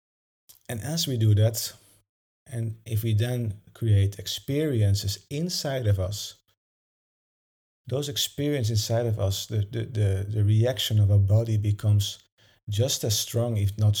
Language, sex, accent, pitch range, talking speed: English, male, Dutch, 105-115 Hz, 140 wpm